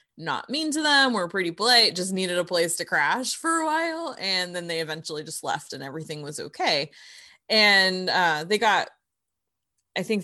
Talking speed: 190 wpm